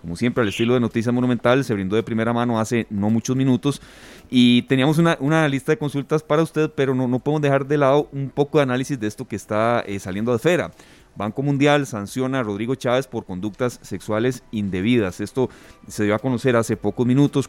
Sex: male